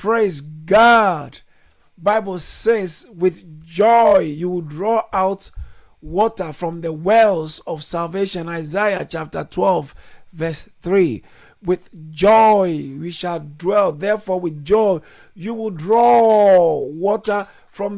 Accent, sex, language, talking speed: Nigerian, male, English, 115 wpm